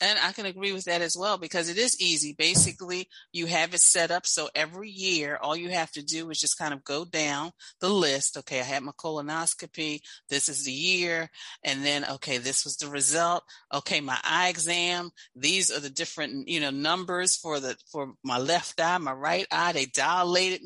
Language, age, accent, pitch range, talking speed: English, 40-59, American, 155-210 Hz, 210 wpm